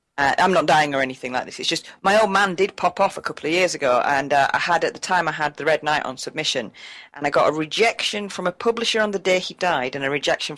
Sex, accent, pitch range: female, British, 140-190 Hz